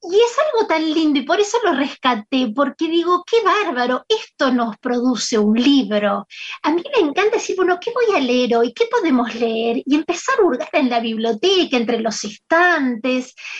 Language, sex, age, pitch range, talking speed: Spanish, female, 20-39, 235-330 Hz, 190 wpm